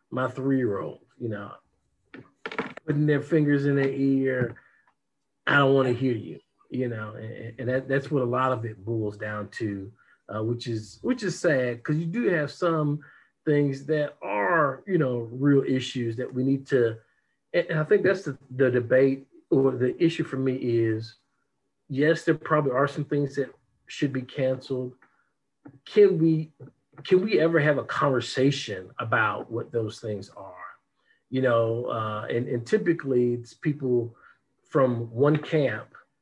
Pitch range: 115-145 Hz